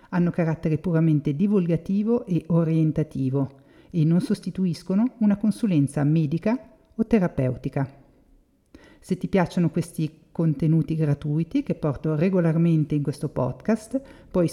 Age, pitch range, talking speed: 50-69, 150-200 Hz, 110 wpm